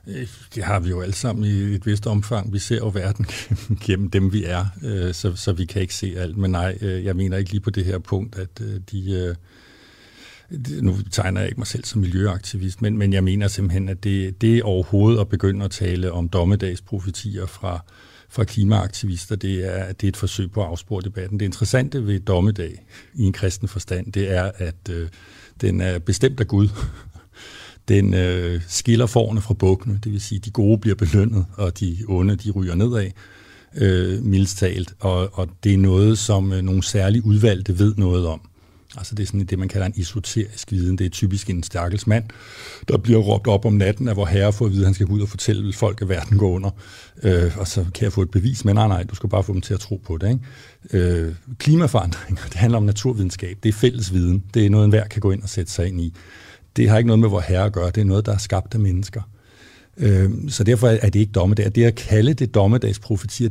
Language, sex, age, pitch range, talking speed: Danish, male, 50-69, 95-110 Hz, 220 wpm